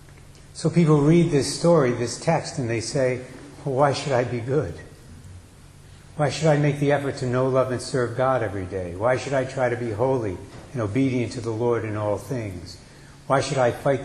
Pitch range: 110-140 Hz